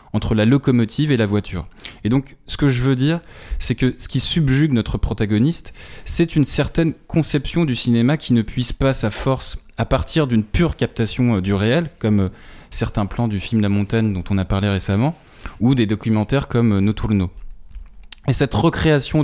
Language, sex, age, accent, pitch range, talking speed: French, male, 20-39, French, 110-135 Hz, 185 wpm